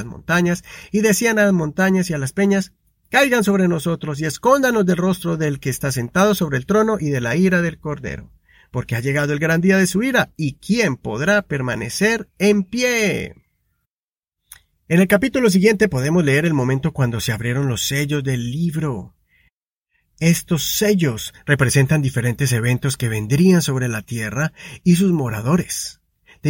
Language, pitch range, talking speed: Spanish, 135-190 Hz, 165 wpm